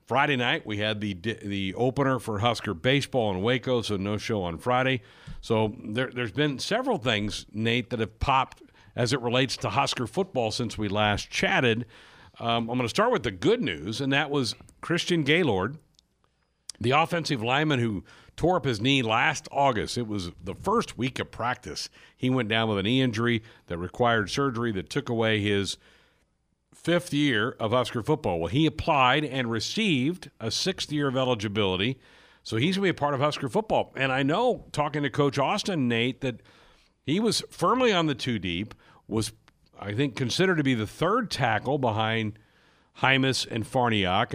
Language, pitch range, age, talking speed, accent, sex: English, 105-140 Hz, 60-79, 185 wpm, American, male